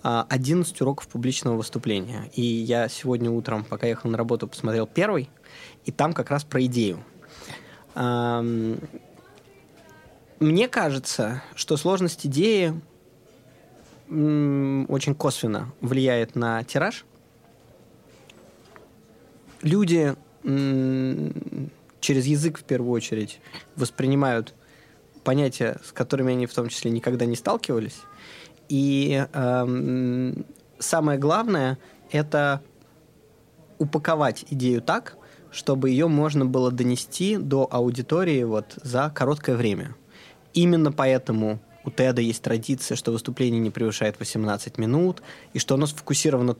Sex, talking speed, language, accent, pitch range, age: male, 105 wpm, Russian, native, 120-155 Hz, 20-39